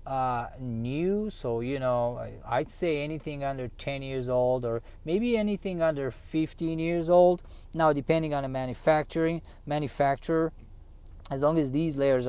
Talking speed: 145 wpm